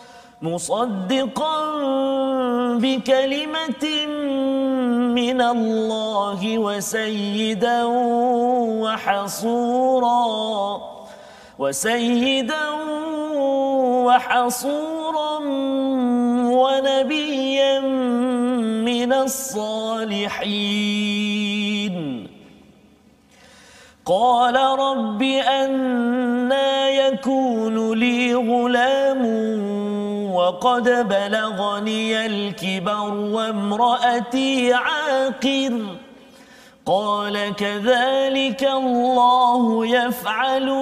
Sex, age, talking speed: male, 40-59, 40 wpm